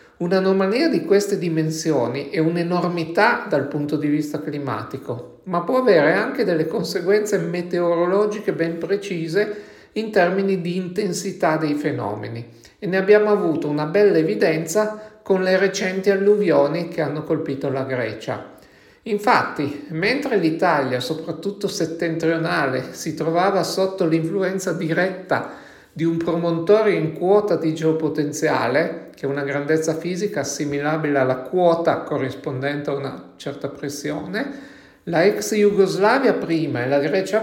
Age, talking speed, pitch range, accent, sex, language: 50-69, 125 wpm, 150-195 Hz, native, male, Italian